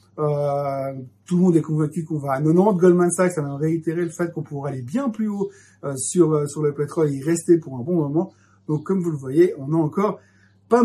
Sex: male